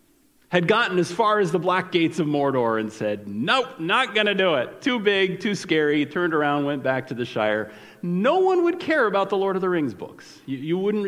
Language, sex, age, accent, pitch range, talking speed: English, male, 40-59, American, 145-200 Hz, 225 wpm